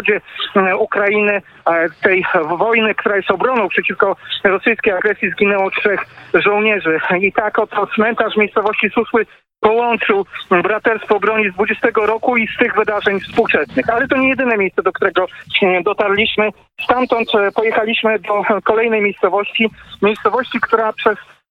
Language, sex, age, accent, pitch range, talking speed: Polish, male, 40-59, native, 200-225 Hz, 130 wpm